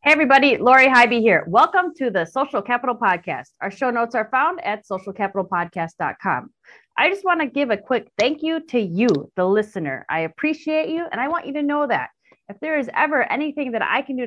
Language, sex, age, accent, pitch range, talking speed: English, female, 30-49, American, 200-290 Hz, 205 wpm